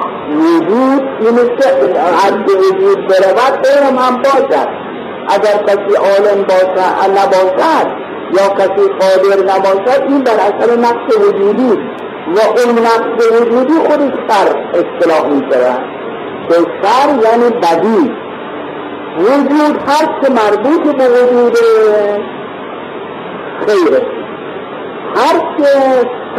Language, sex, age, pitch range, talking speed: Persian, male, 50-69, 195-310 Hz, 100 wpm